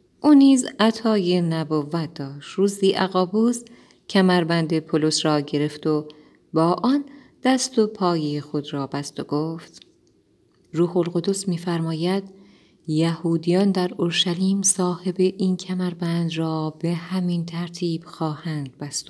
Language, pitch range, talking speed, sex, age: Persian, 150-185 Hz, 115 wpm, female, 30-49